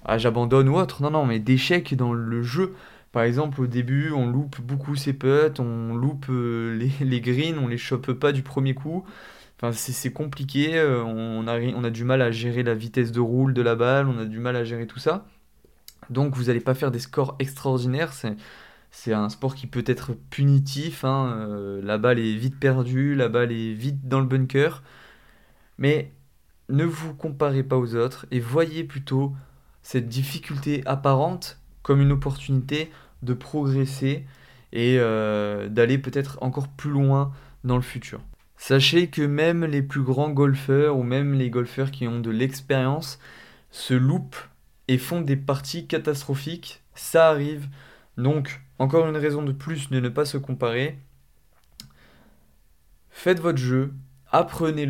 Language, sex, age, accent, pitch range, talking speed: French, male, 20-39, French, 120-145 Hz, 170 wpm